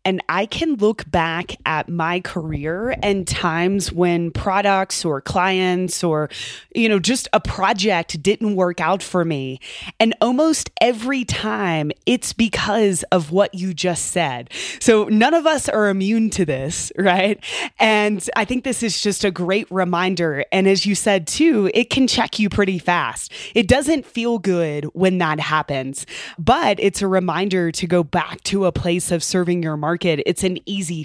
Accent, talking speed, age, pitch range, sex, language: American, 170 wpm, 20-39, 175-215 Hz, female, English